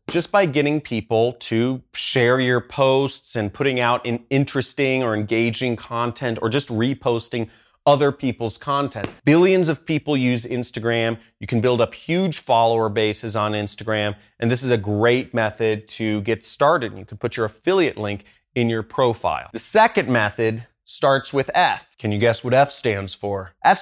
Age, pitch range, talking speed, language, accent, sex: 30-49, 110-135 Hz, 170 wpm, English, American, male